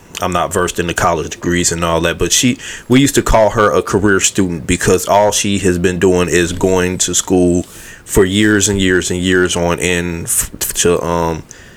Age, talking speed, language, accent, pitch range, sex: 30-49, 210 wpm, English, American, 90-105 Hz, male